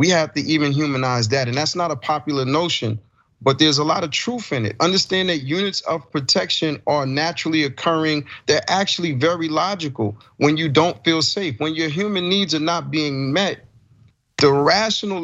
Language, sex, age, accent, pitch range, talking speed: English, male, 40-59, American, 140-180 Hz, 185 wpm